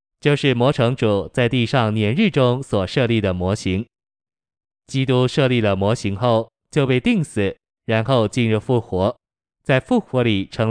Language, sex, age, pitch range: Chinese, male, 20-39, 100-125 Hz